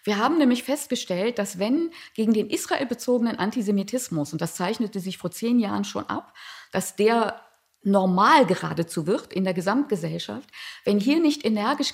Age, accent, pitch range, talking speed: 50-69, German, 180-250 Hz, 155 wpm